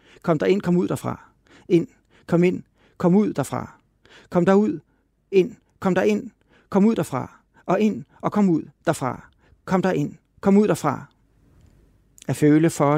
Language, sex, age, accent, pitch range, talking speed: Danish, male, 60-79, native, 140-190 Hz, 165 wpm